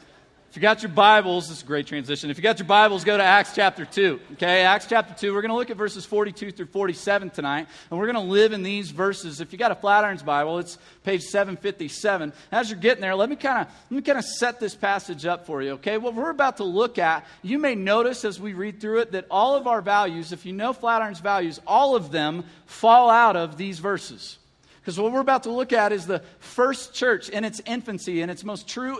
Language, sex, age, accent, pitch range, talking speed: English, male, 40-59, American, 175-220 Hz, 240 wpm